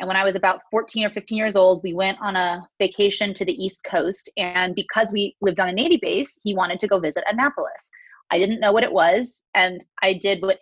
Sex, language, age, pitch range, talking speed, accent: female, English, 30-49, 190-220 Hz, 245 wpm, American